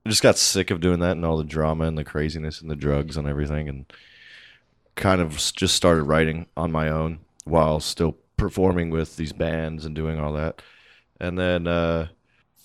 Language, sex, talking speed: English, male, 195 wpm